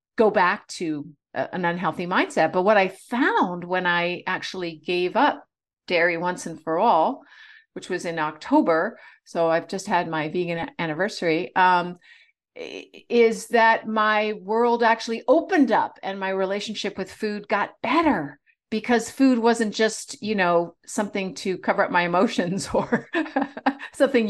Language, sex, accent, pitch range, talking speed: English, female, American, 165-225 Hz, 150 wpm